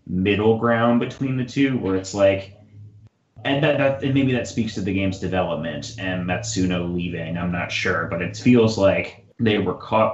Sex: male